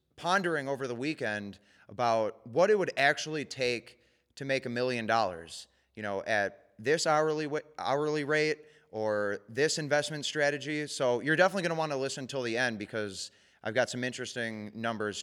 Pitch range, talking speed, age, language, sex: 110-150 Hz, 170 wpm, 30-49, English, male